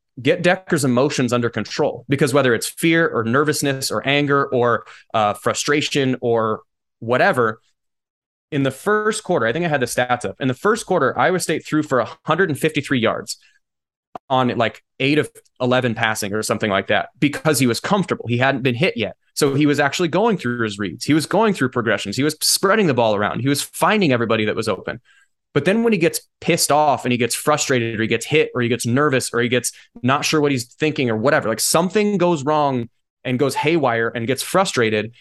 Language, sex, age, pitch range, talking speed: English, male, 20-39, 120-155 Hz, 210 wpm